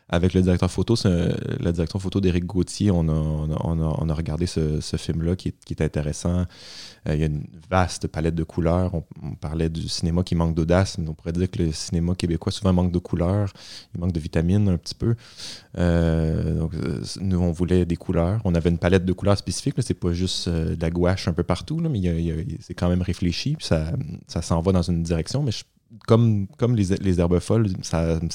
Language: French